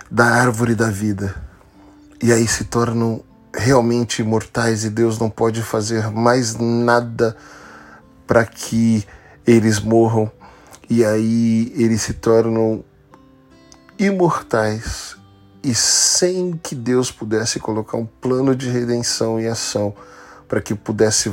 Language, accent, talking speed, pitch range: Portuguese, Brazilian, 120 wpm, 110-130 Hz